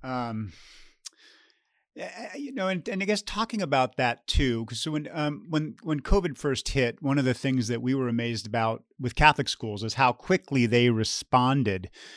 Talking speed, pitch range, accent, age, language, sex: 180 wpm, 110-140 Hz, American, 40-59, English, male